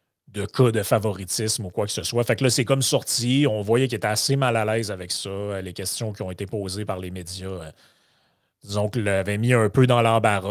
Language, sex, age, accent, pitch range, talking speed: French, male, 30-49, Canadian, 100-130 Hz, 235 wpm